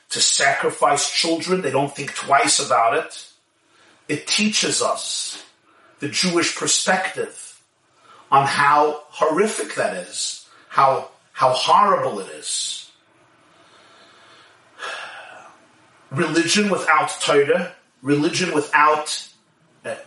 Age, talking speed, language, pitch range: 40-59, 95 wpm, English, 150-180 Hz